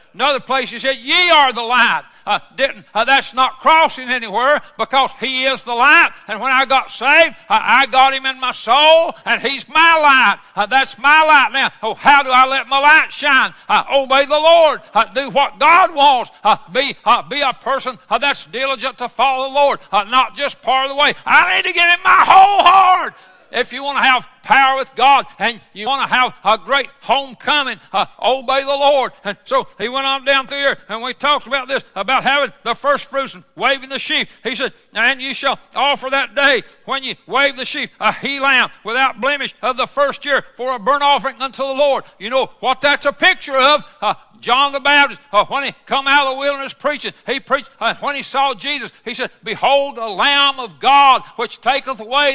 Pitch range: 250-285 Hz